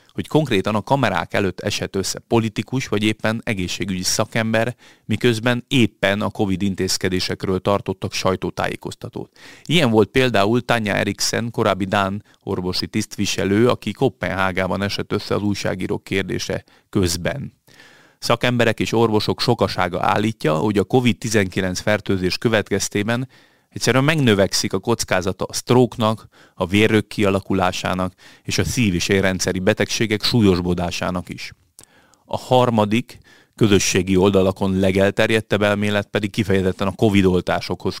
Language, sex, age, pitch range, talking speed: Hungarian, male, 30-49, 95-115 Hz, 115 wpm